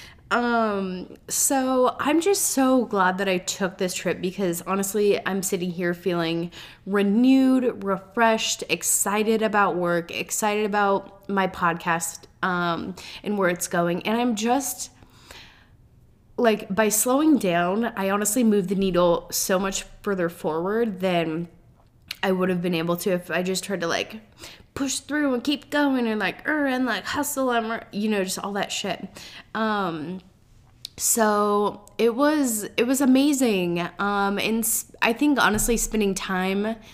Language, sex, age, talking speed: English, female, 20-39, 155 wpm